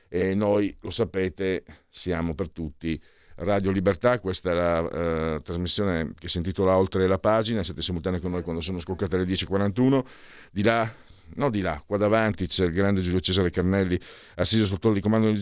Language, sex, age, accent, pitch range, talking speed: Italian, male, 50-69, native, 95-120 Hz, 185 wpm